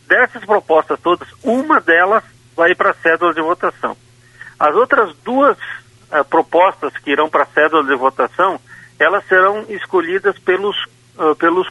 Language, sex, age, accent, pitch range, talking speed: Portuguese, male, 50-69, Brazilian, 135-180 Hz, 150 wpm